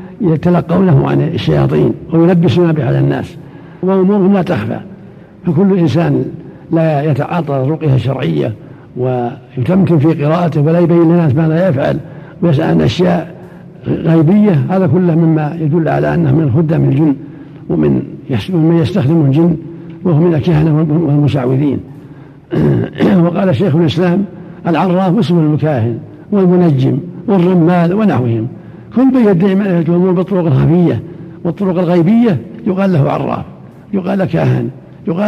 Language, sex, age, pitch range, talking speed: Arabic, male, 60-79, 145-175 Hz, 115 wpm